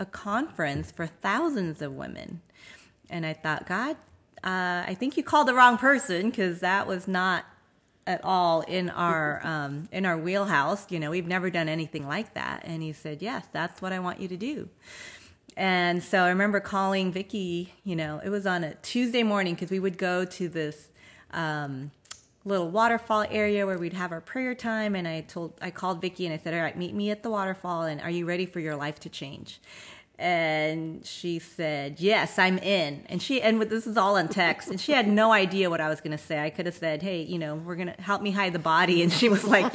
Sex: female